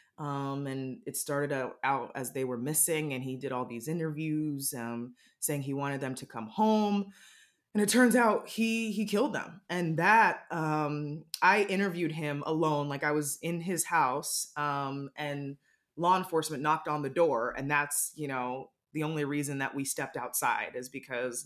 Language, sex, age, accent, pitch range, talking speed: English, female, 20-39, American, 145-175 Hz, 180 wpm